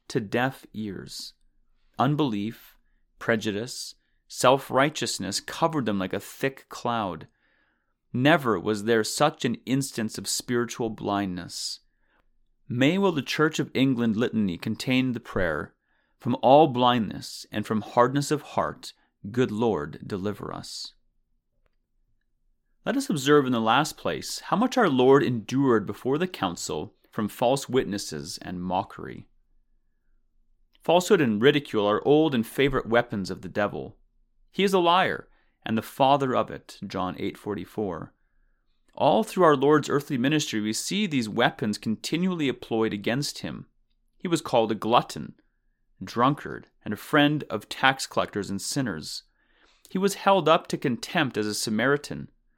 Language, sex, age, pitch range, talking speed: English, male, 30-49, 110-145 Hz, 140 wpm